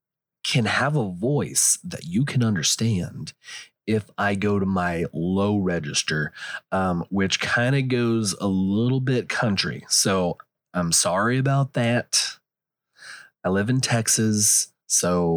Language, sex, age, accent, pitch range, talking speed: English, male, 30-49, American, 100-125 Hz, 135 wpm